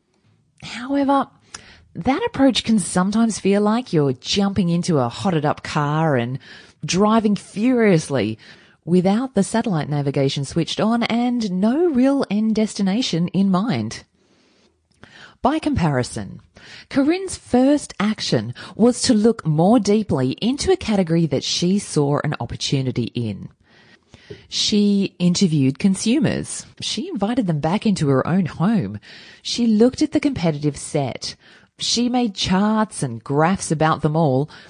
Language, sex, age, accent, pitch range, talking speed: English, female, 30-49, Australian, 145-220 Hz, 130 wpm